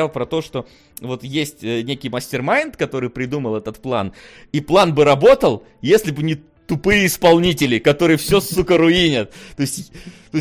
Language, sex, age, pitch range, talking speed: Russian, male, 20-39, 110-155 Hz, 155 wpm